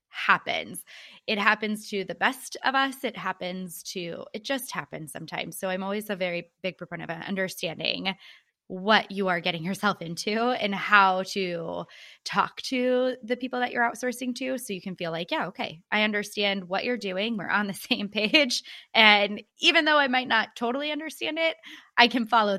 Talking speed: 185 wpm